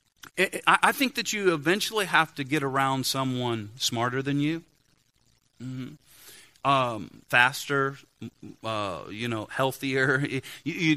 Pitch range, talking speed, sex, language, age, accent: 130-160 Hz, 120 wpm, male, English, 40-59, American